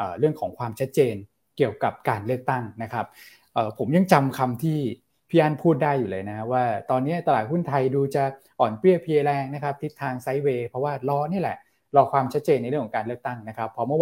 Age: 20-39